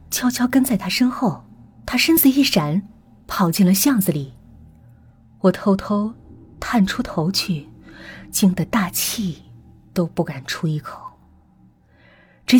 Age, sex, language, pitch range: 20-39, female, Chinese, 150-205 Hz